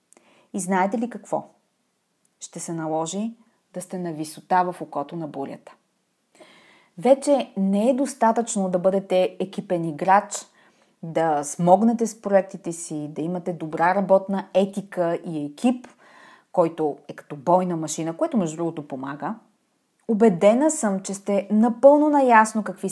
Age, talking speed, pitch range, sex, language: 30-49, 135 wpm, 180-230 Hz, female, Bulgarian